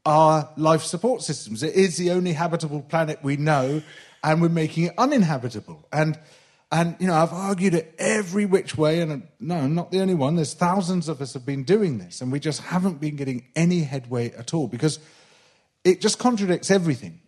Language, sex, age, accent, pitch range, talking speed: English, male, 40-59, British, 145-185 Hz, 200 wpm